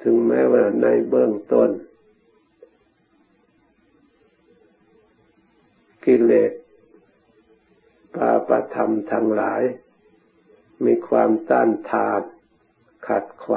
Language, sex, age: Thai, male, 60-79